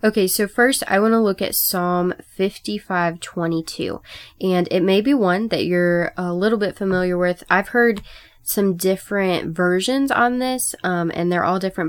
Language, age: English, 10-29